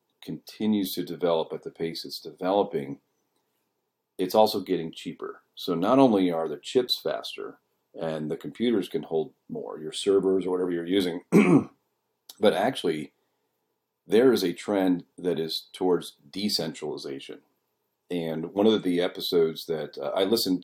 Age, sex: 40-59, male